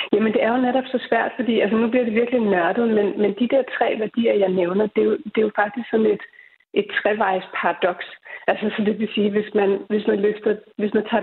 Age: 30-49